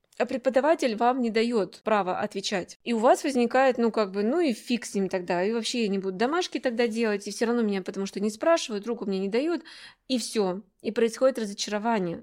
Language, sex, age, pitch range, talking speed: Russian, female, 20-39, 190-230 Hz, 210 wpm